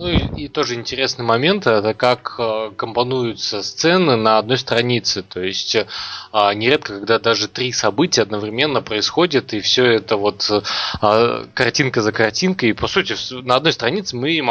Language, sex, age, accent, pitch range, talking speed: Russian, male, 20-39, native, 110-130 Hz, 165 wpm